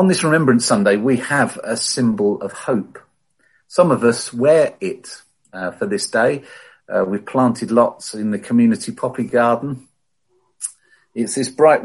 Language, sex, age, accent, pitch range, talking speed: English, male, 50-69, British, 110-140 Hz, 155 wpm